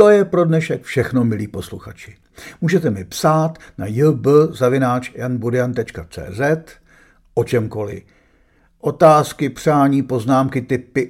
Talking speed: 95 wpm